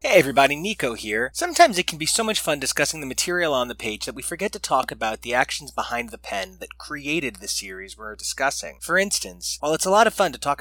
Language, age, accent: English, 20-39, American